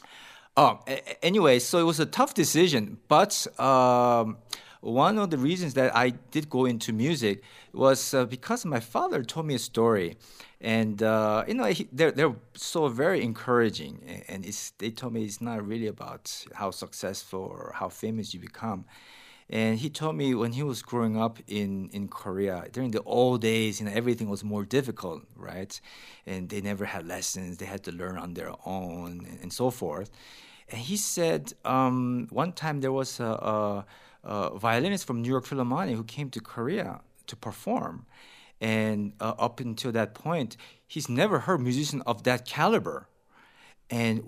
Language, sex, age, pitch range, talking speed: English, male, 40-59, 110-140 Hz, 175 wpm